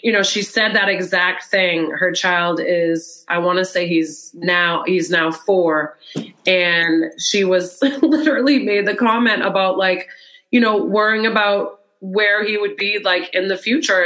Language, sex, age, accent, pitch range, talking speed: English, female, 30-49, American, 180-225 Hz, 170 wpm